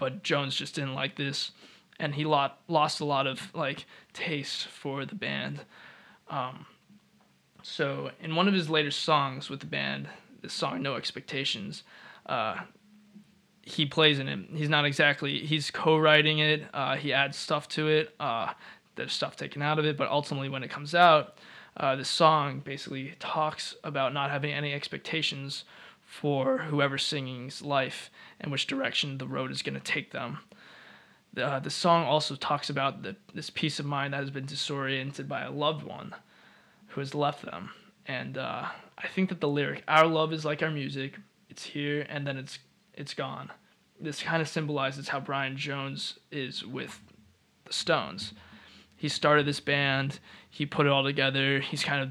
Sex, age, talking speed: male, 20-39, 175 wpm